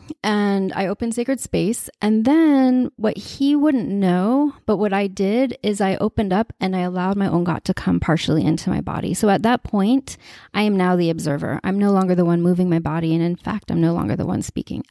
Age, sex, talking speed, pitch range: 20-39, female, 230 wpm, 180-230 Hz